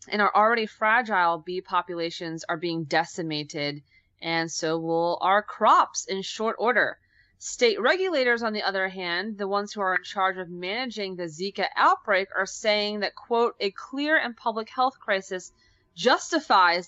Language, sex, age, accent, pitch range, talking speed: English, female, 20-39, American, 170-230 Hz, 160 wpm